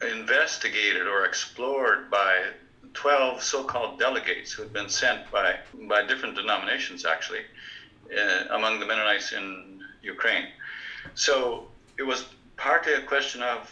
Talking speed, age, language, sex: 125 wpm, 60-79, English, male